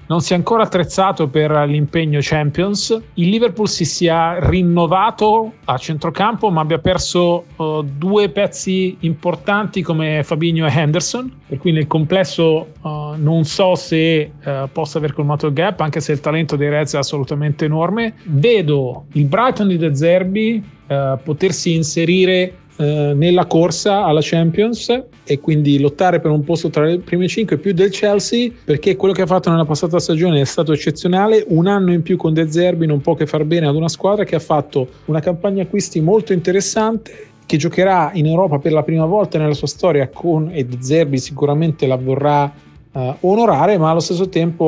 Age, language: 40-59, Italian